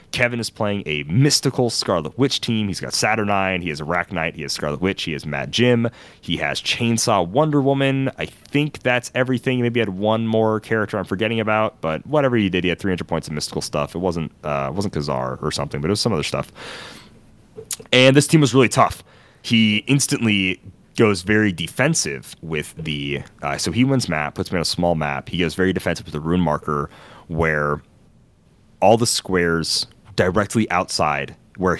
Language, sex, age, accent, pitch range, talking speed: English, male, 30-49, American, 80-120 Hz, 195 wpm